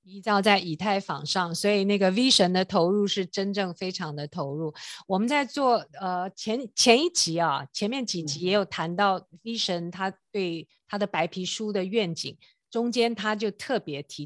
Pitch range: 175-230 Hz